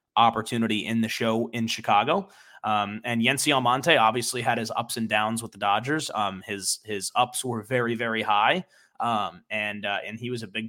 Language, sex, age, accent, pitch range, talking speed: English, male, 20-39, American, 110-130 Hz, 195 wpm